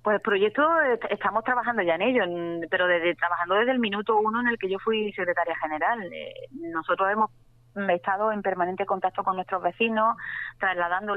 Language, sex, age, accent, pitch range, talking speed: Spanish, female, 20-39, Spanish, 170-195 Hz, 165 wpm